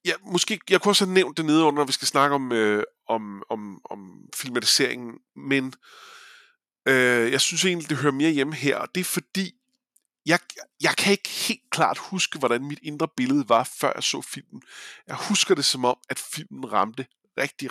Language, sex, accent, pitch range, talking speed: Danish, male, native, 120-185 Hz, 195 wpm